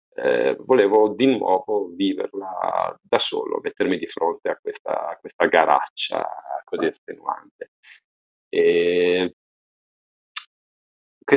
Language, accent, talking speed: Italian, native, 100 wpm